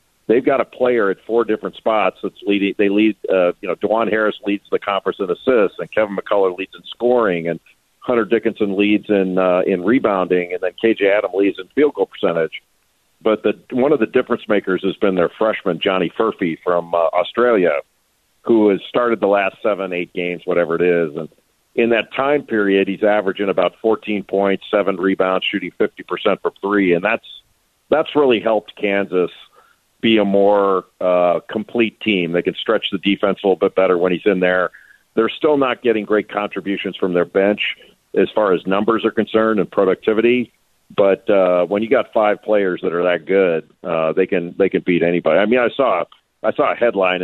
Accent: American